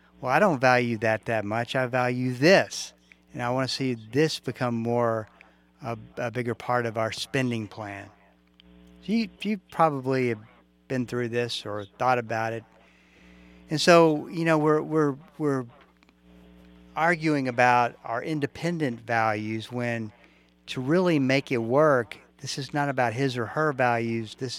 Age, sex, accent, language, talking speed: 50-69, male, American, English, 160 wpm